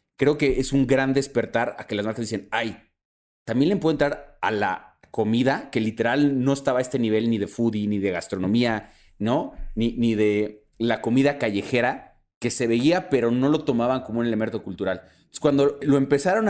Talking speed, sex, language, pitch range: 195 wpm, male, Spanish, 110-135 Hz